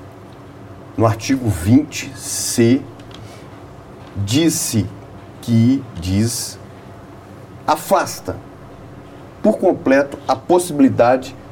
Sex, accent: male, Brazilian